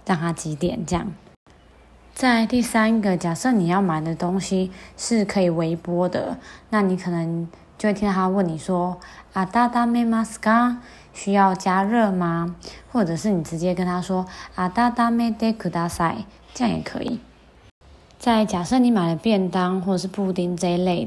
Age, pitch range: 20-39, 175-215 Hz